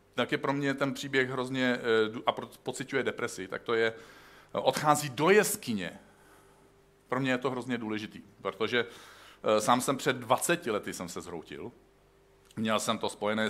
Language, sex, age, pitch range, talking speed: Czech, male, 50-69, 105-135 Hz, 165 wpm